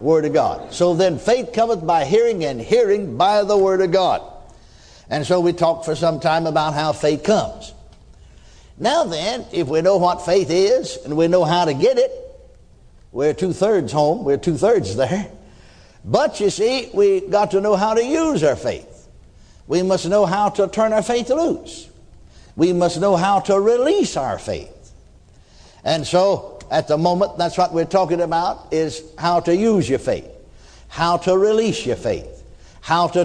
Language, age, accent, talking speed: English, 60-79, American, 180 wpm